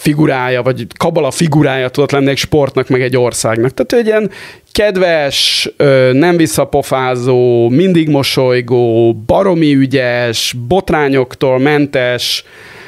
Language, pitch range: Hungarian, 125-155 Hz